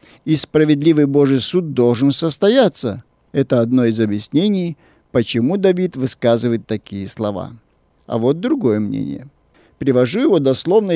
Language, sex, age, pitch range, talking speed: Russian, male, 50-69, 120-165 Hz, 120 wpm